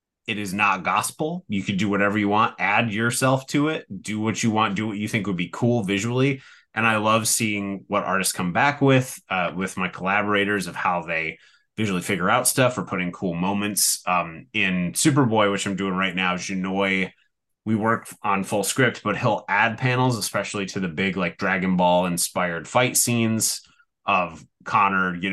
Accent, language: American, English